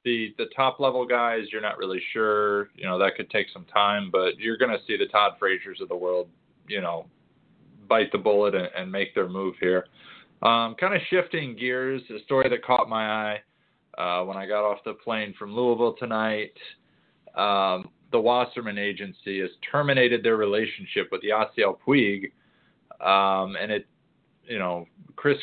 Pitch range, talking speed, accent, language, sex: 100-130 Hz, 180 wpm, American, English, male